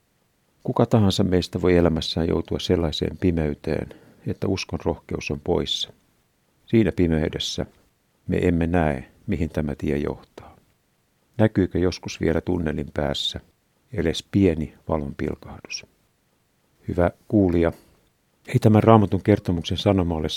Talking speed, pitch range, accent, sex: 110 wpm, 80-100 Hz, native, male